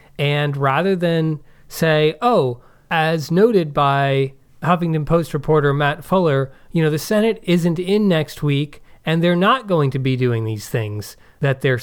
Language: English